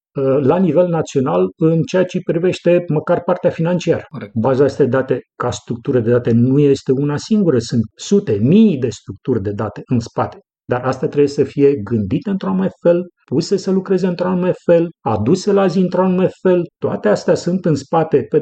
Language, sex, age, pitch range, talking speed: Romanian, male, 40-59, 125-165 Hz, 185 wpm